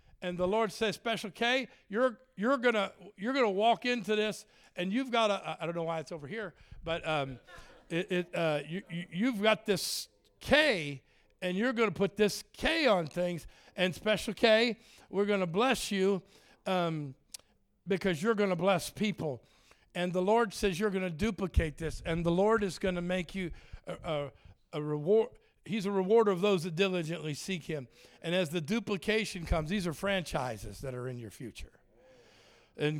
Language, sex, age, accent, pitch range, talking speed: English, male, 50-69, American, 150-200 Hz, 190 wpm